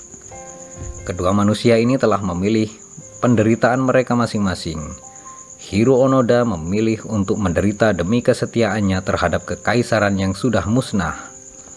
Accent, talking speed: native, 100 wpm